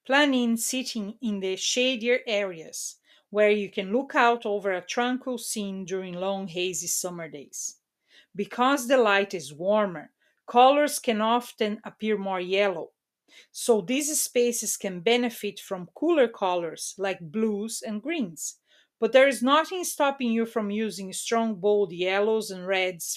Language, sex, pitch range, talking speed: English, female, 190-240 Hz, 150 wpm